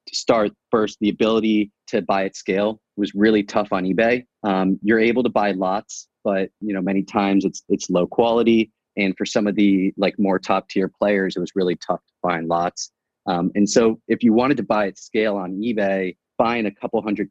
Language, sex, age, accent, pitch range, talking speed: English, male, 30-49, American, 95-110 Hz, 215 wpm